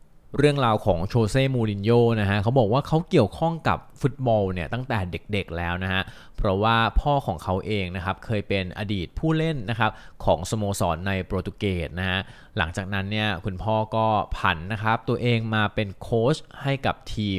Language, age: Thai, 20-39